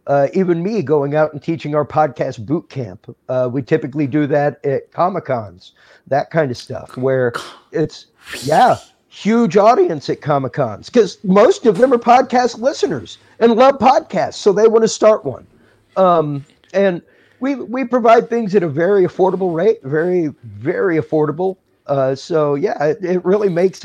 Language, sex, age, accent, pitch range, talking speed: English, male, 50-69, American, 135-175 Hz, 165 wpm